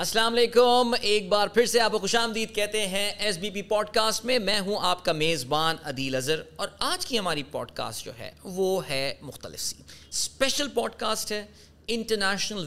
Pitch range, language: 140-210 Hz, Urdu